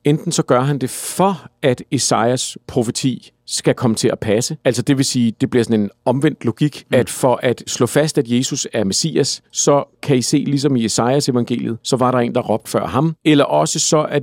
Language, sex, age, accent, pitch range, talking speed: Danish, male, 50-69, native, 120-155 Hz, 225 wpm